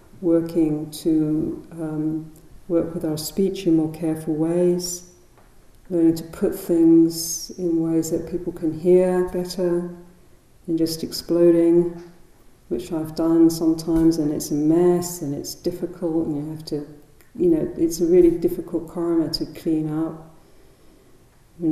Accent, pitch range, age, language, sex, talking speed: British, 155-175 Hz, 50-69, English, female, 140 wpm